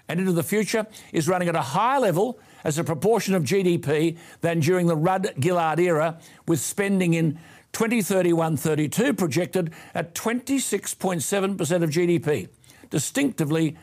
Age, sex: 60-79, male